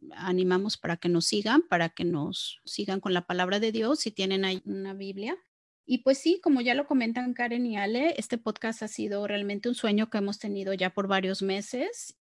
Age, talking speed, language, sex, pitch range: 30-49, 210 wpm, Spanish, female, 195-255 Hz